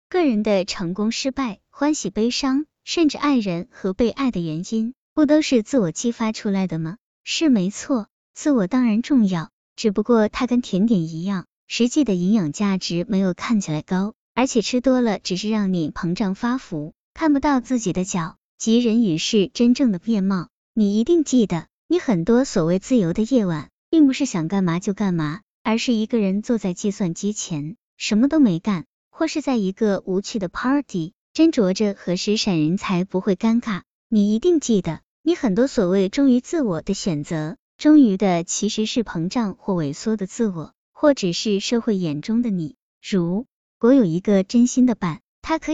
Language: Chinese